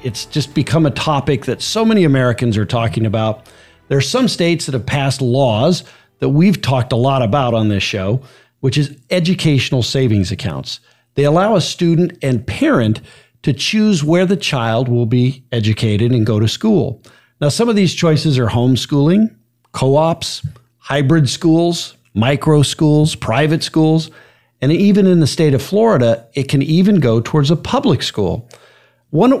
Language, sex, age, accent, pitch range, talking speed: English, male, 50-69, American, 120-155 Hz, 165 wpm